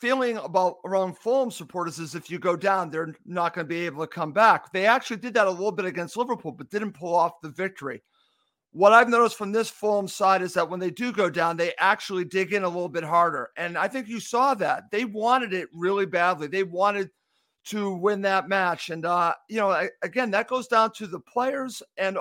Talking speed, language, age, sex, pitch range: 230 wpm, English, 50-69, male, 175-215 Hz